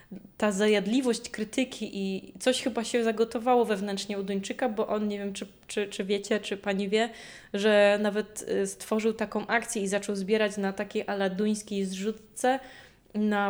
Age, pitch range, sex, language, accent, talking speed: 20-39, 200-240 Hz, female, Polish, native, 155 wpm